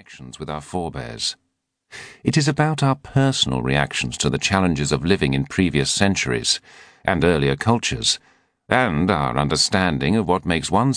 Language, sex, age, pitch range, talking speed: English, male, 50-69, 75-110 Hz, 150 wpm